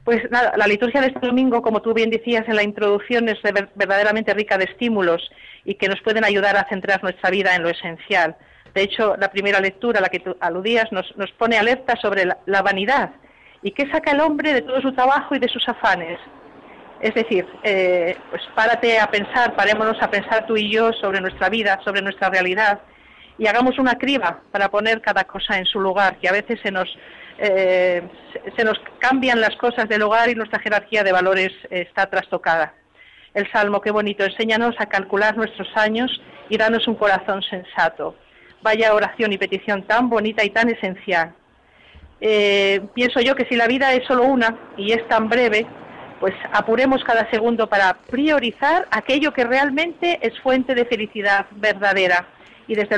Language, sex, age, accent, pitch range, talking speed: Spanish, female, 40-59, Spanish, 195-235 Hz, 185 wpm